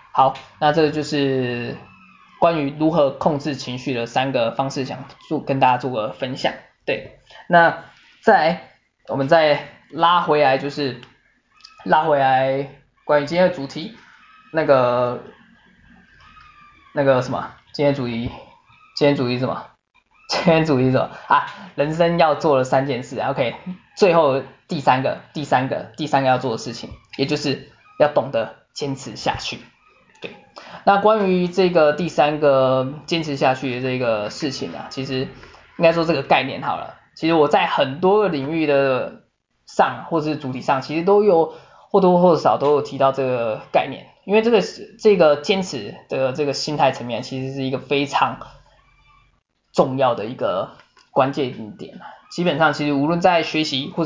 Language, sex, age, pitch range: Chinese, male, 10-29, 135-170 Hz